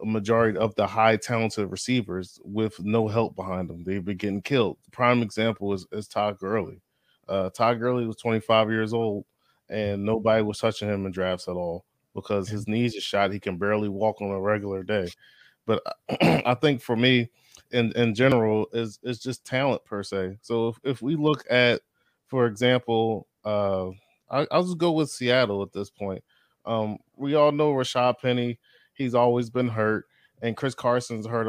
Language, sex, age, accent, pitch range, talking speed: English, male, 20-39, American, 105-120 Hz, 185 wpm